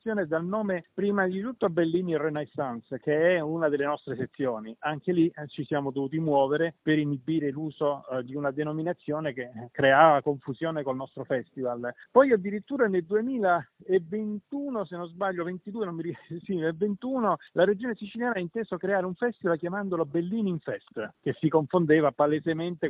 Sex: male